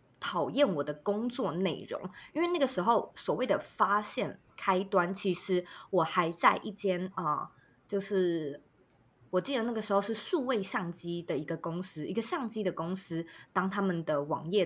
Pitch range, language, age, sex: 165-205 Hz, Chinese, 20-39, female